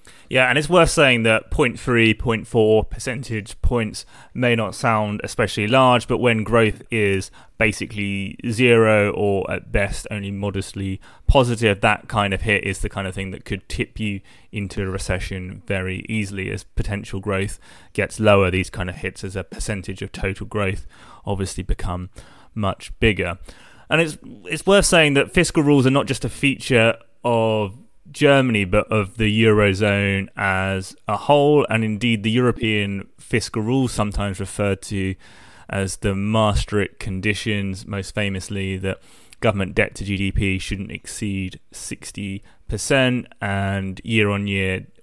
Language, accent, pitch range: English, British, 95-115 Hz